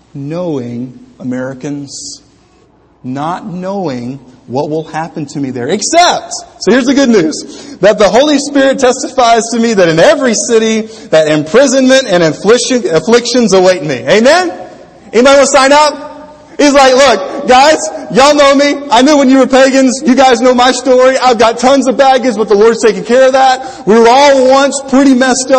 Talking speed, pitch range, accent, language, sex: 175 wpm, 160-260 Hz, American, English, male